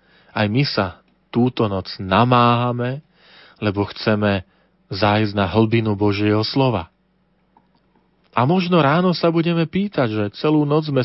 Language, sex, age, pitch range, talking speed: Slovak, male, 40-59, 100-130 Hz, 125 wpm